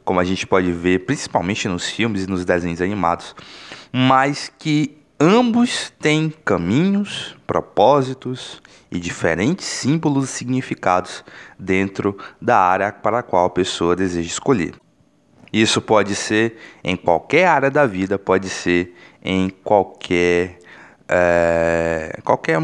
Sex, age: male, 20-39